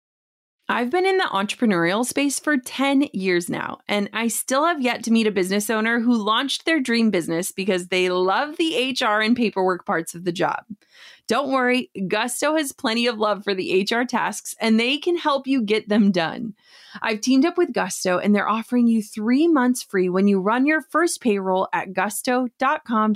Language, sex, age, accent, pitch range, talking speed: English, female, 30-49, American, 200-270 Hz, 195 wpm